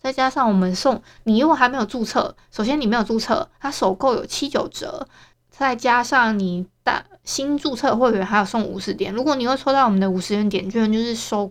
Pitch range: 200-250 Hz